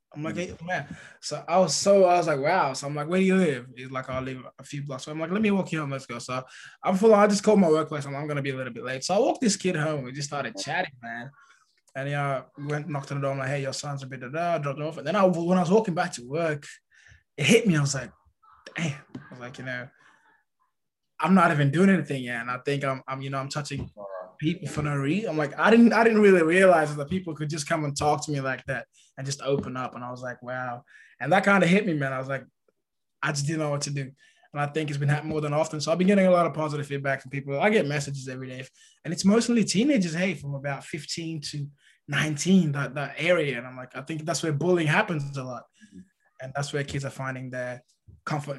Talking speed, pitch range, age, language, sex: 285 wpm, 135-170 Hz, 20-39, English, male